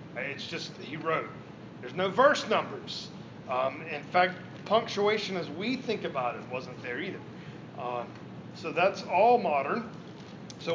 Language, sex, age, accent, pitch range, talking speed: English, male, 40-59, American, 165-205 Hz, 145 wpm